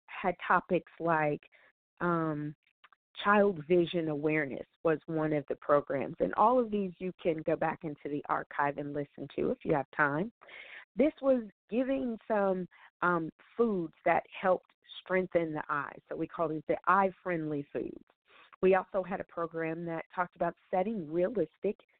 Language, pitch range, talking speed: English, 150-185 Hz, 160 wpm